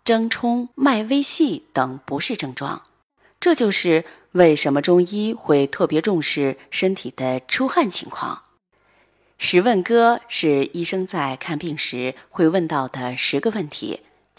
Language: Chinese